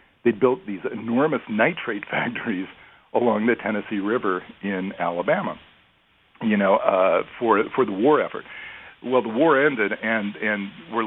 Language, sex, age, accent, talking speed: English, male, 50-69, American, 145 wpm